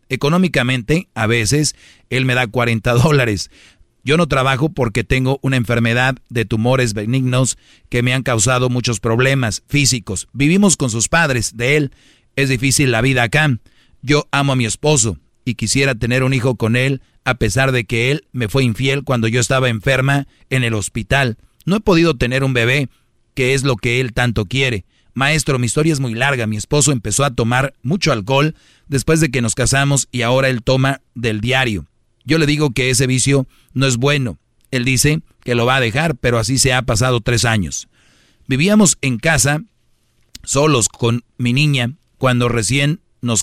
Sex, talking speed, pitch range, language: male, 185 wpm, 115-140 Hz, Spanish